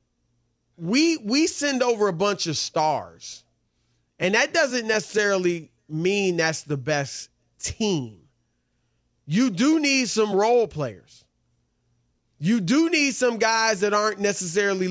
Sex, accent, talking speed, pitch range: male, American, 125 wpm, 175-250 Hz